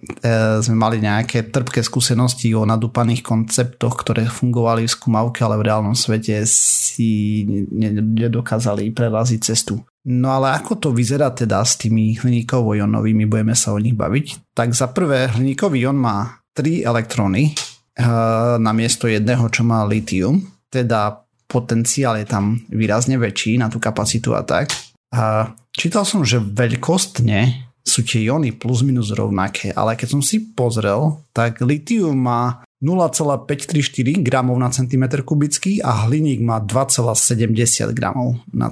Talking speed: 140 wpm